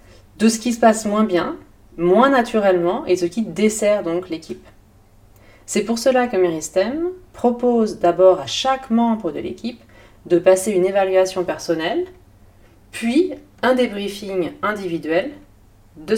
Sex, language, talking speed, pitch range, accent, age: female, French, 135 wpm, 140-220 Hz, French, 30-49